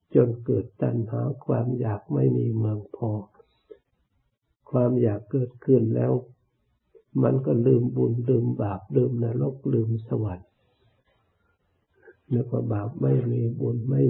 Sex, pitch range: male, 110-130 Hz